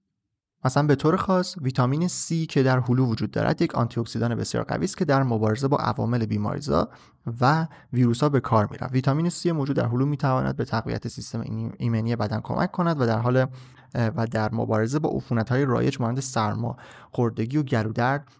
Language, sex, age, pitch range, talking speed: Persian, male, 30-49, 115-150 Hz, 175 wpm